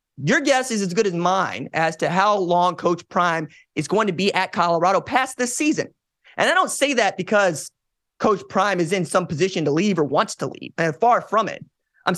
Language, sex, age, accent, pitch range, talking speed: English, male, 20-39, American, 175-235 Hz, 215 wpm